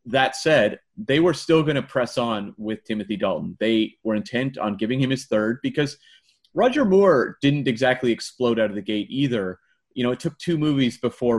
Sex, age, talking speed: male, 30-49, 200 wpm